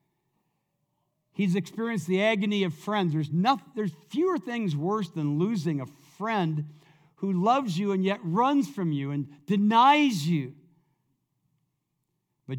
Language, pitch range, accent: English, 160-225 Hz, American